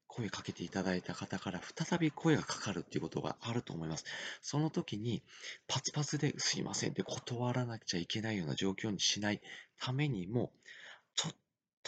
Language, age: Japanese, 40-59